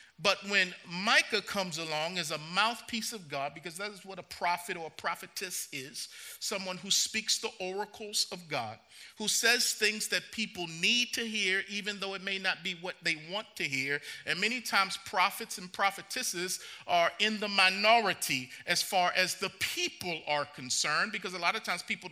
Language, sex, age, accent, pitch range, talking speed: English, male, 40-59, American, 175-220 Hz, 185 wpm